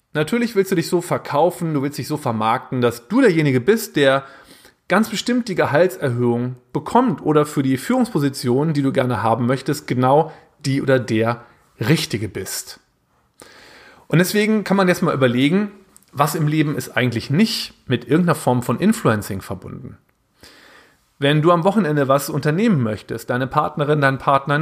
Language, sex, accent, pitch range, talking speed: German, male, German, 130-185 Hz, 160 wpm